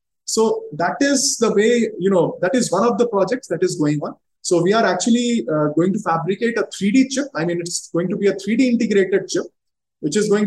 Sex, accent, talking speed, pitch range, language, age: male, Indian, 235 wpm, 165-225 Hz, English, 20-39